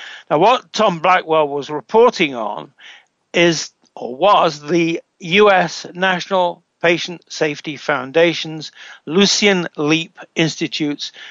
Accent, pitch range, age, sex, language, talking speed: British, 155-190 Hz, 60-79, male, English, 100 wpm